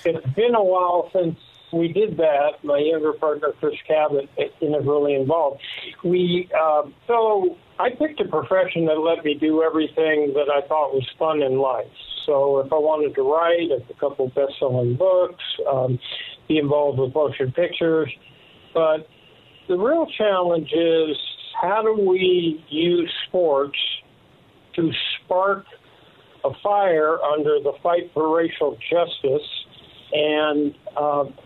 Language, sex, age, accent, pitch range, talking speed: English, male, 50-69, American, 150-180 Hz, 140 wpm